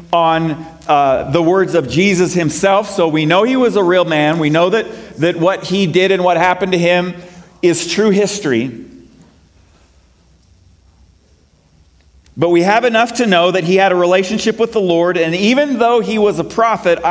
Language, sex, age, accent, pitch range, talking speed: English, male, 40-59, American, 145-190 Hz, 180 wpm